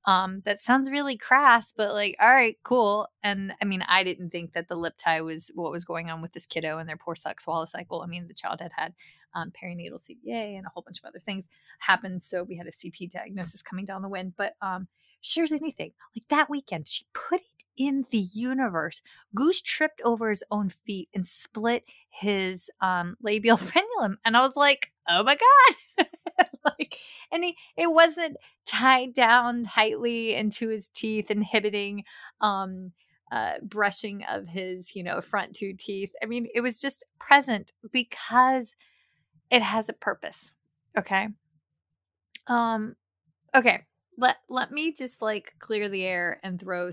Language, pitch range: English, 180-250 Hz